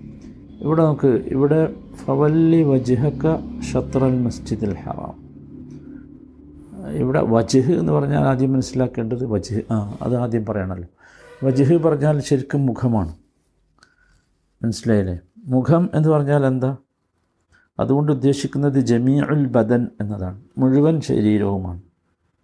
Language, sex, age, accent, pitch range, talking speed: Malayalam, male, 50-69, native, 110-145 Hz, 95 wpm